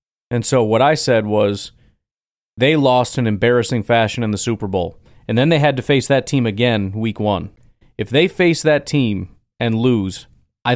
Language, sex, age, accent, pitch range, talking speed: English, male, 30-49, American, 110-135 Hz, 190 wpm